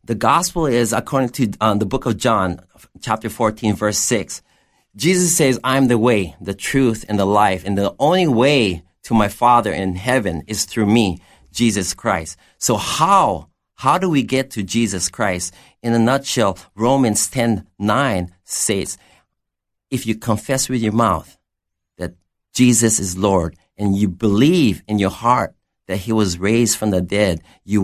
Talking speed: 170 wpm